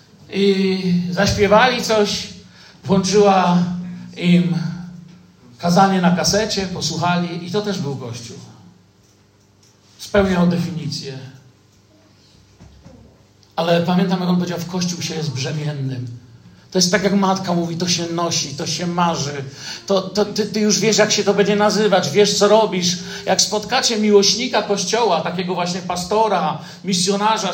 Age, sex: 50-69, male